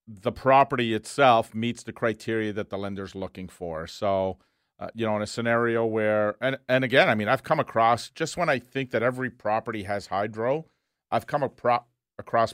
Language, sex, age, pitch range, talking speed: English, male, 40-59, 100-130 Hz, 195 wpm